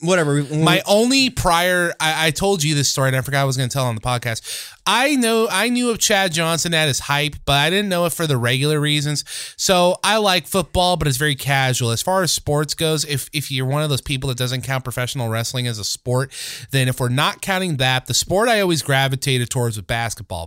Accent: American